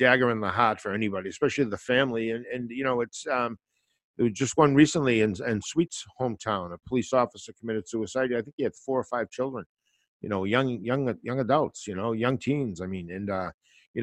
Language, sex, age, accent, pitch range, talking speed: English, male, 50-69, American, 100-135 Hz, 215 wpm